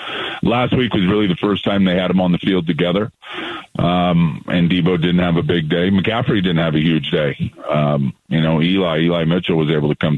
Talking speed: 225 wpm